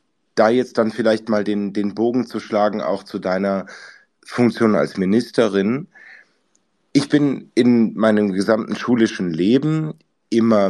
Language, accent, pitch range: German, German, 90-115 Hz